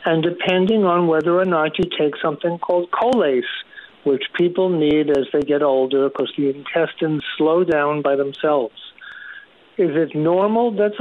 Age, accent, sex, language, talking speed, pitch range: 60-79, American, male, English, 160 wpm, 150-180 Hz